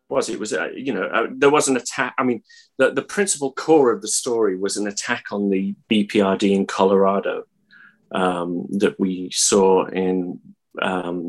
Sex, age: male, 30-49